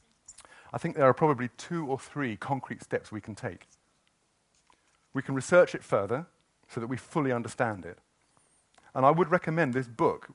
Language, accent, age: English, British, 50-69